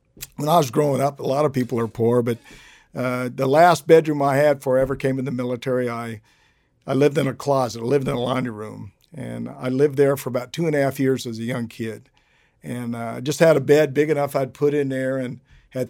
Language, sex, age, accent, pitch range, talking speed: English, male, 50-69, American, 125-160 Hz, 240 wpm